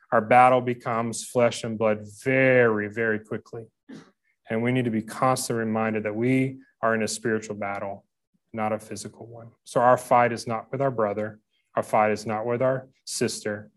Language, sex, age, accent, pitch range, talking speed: English, male, 30-49, American, 110-135 Hz, 185 wpm